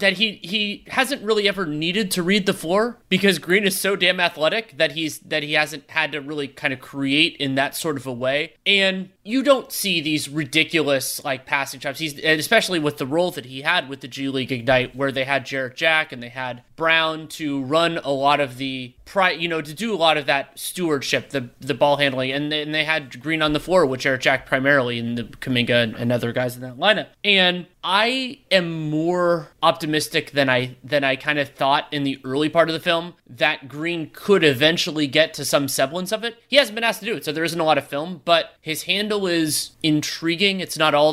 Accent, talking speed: American, 230 wpm